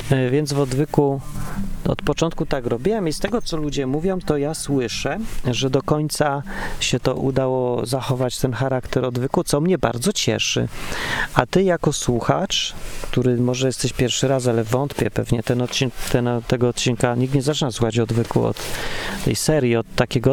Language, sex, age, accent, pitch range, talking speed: Polish, male, 40-59, native, 115-145 Hz, 170 wpm